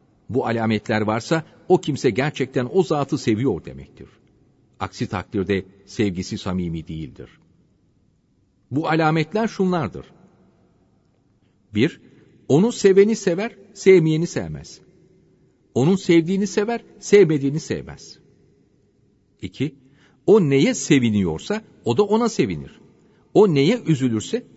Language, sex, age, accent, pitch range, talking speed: Turkish, male, 50-69, native, 110-185 Hz, 100 wpm